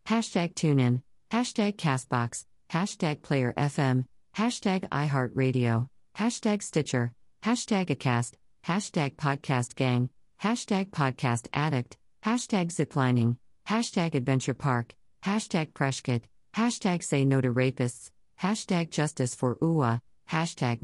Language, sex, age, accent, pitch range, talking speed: English, female, 50-69, American, 125-150 Hz, 105 wpm